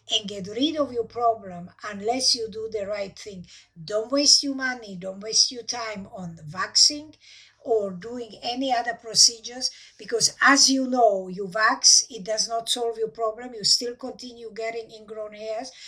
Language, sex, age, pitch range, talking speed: English, female, 50-69, 215-255 Hz, 170 wpm